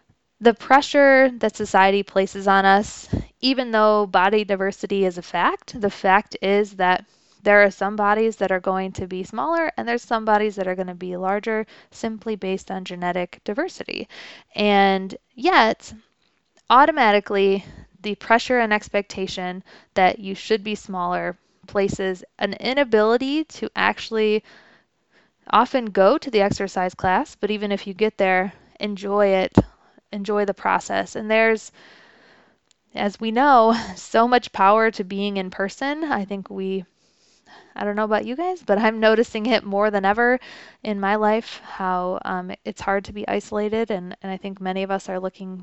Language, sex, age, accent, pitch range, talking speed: English, female, 20-39, American, 190-225 Hz, 165 wpm